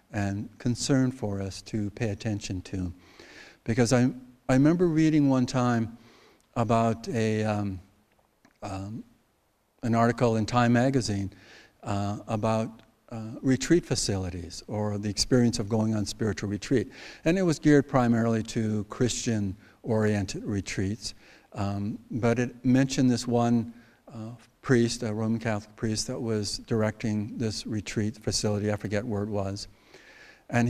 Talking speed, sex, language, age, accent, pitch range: 135 wpm, male, English, 60-79, American, 105-125 Hz